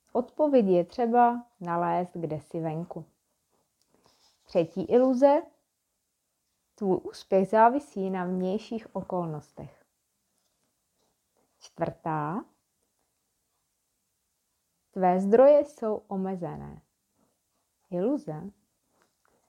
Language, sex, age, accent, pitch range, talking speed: Czech, female, 30-49, native, 180-235 Hz, 65 wpm